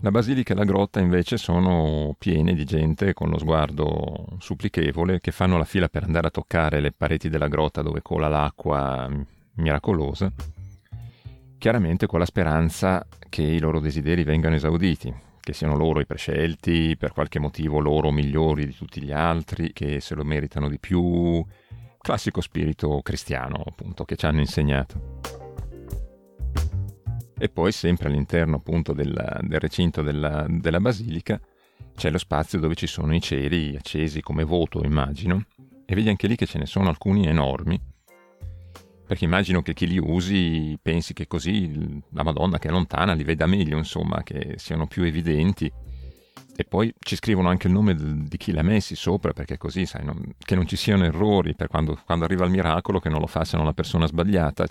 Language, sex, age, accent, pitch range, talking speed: Italian, male, 40-59, native, 75-95 Hz, 175 wpm